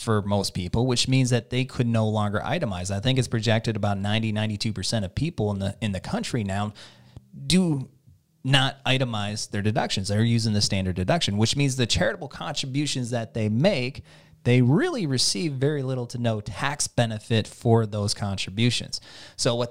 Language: English